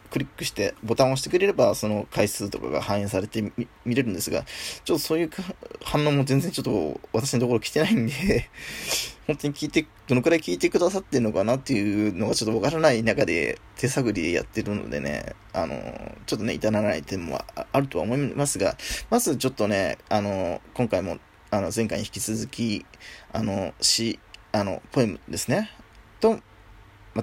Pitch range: 105-150 Hz